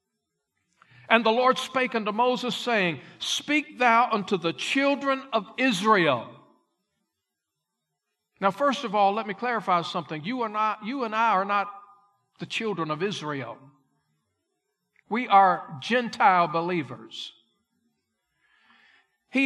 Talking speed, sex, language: 115 wpm, male, English